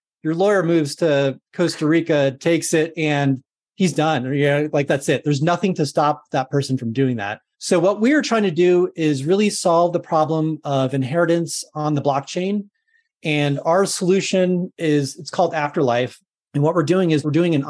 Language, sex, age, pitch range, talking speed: English, male, 30-49, 140-175 Hz, 185 wpm